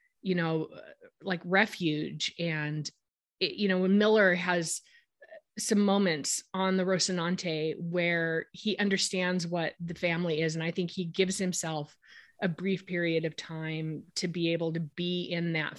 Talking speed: 155 wpm